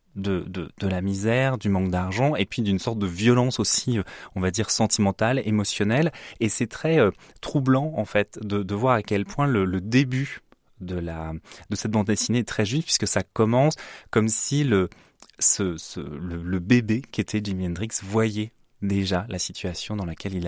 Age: 20-39